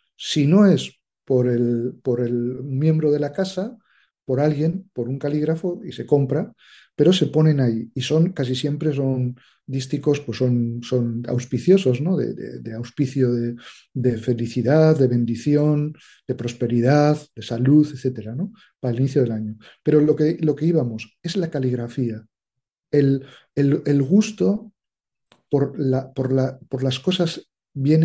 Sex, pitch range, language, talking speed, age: male, 120-150 Hz, Spanish, 160 wpm, 40-59